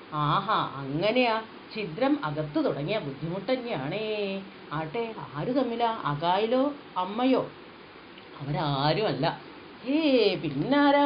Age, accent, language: 40-59, native, Malayalam